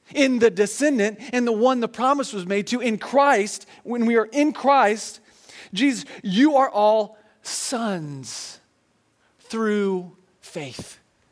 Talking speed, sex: 135 wpm, male